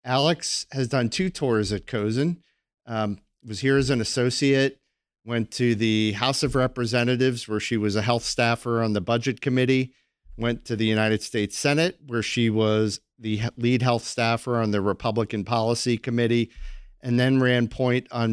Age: 40-59